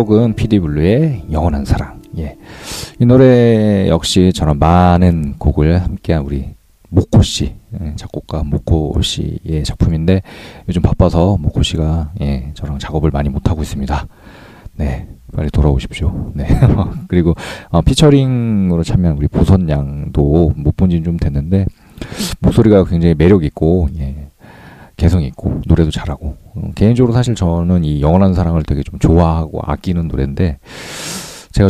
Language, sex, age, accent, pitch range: Korean, male, 40-59, native, 75-105 Hz